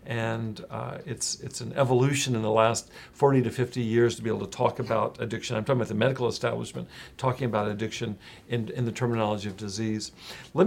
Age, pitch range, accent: 50-69, 110-130 Hz, American